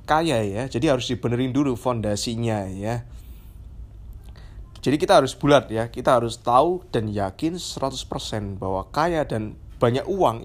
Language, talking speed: Indonesian, 140 wpm